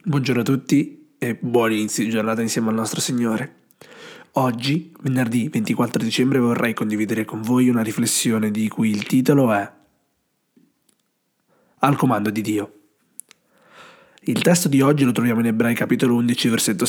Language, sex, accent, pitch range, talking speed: Italian, male, native, 120-155 Hz, 150 wpm